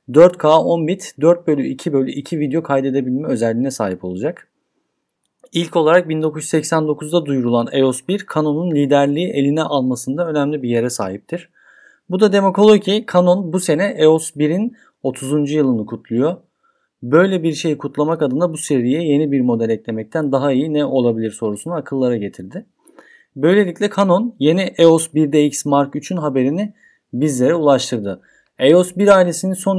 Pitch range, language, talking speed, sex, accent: 135-175 Hz, Turkish, 145 wpm, male, native